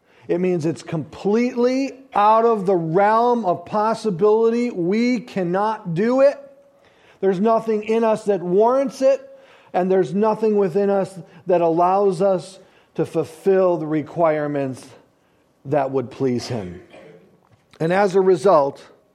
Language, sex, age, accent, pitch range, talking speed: English, male, 40-59, American, 160-215 Hz, 130 wpm